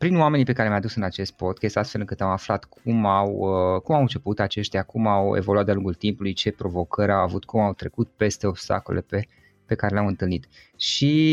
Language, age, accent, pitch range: Romanian, 20-39, native, 100-120 Hz